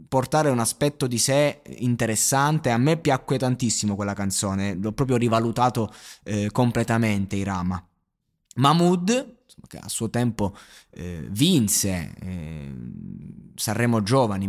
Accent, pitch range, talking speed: native, 105-130 Hz, 110 wpm